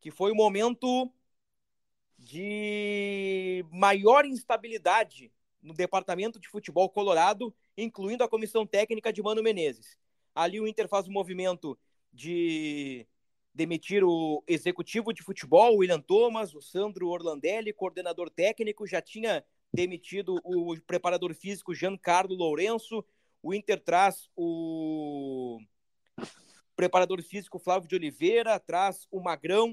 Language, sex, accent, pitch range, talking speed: Portuguese, male, Brazilian, 165-215 Hz, 125 wpm